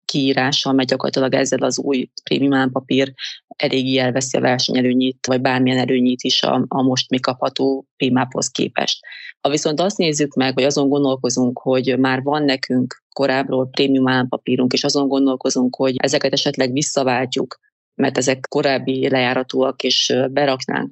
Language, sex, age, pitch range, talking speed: Hungarian, female, 30-49, 130-140 Hz, 140 wpm